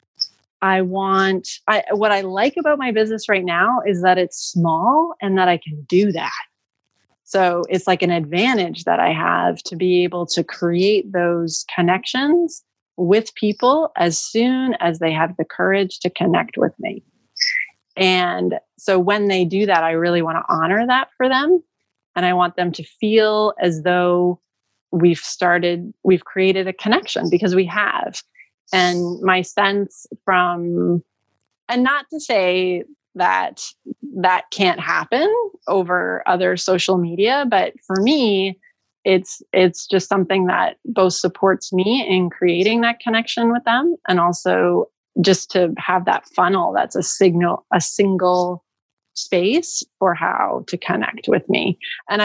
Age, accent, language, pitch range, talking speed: 30-49, American, English, 180-220 Hz, 155 wpm